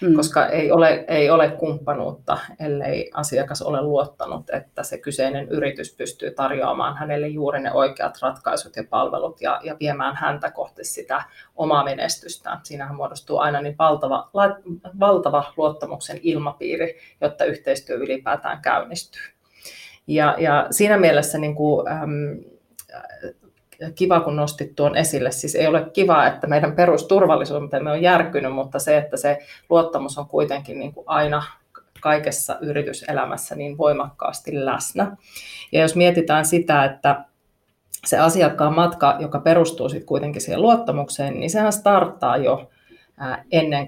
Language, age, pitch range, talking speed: Finnish, 30-49, 145-170 Hz, 125 wpm